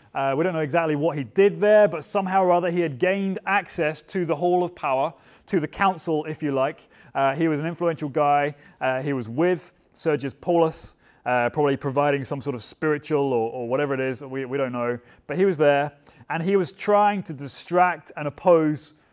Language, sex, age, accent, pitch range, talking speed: English, male, 30-49, British, 135-175 Hz, 215 wpm